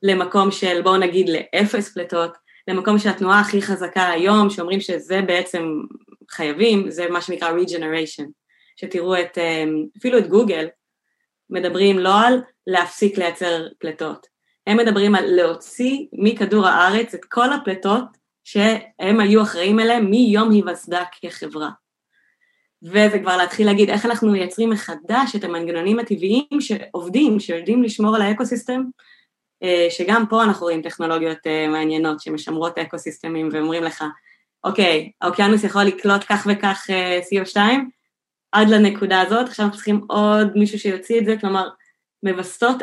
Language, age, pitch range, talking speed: Hebrew, 20-39, 175-215 Hz, 130 wpm